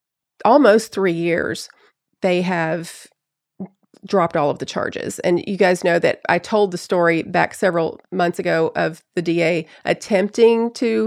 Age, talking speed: 30-49, 150 wpm